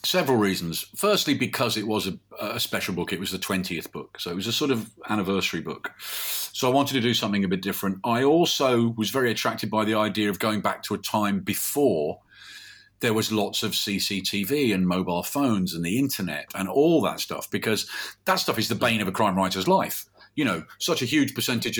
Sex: male